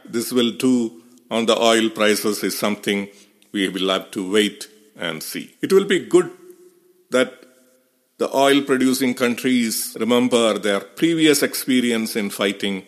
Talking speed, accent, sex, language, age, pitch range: 140 wpm, Indian, male, English, 50-69, 105-135 Hz